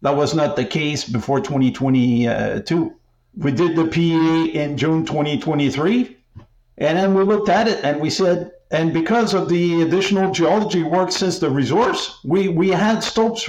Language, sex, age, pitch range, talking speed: English, male, 50-69, 145-185 Hz, 165 wpm